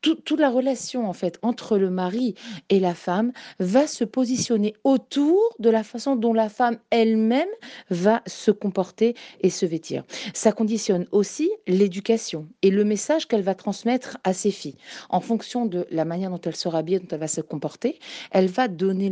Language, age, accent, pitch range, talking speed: French, 40-59, French, 175-225 Hz, 185 wpm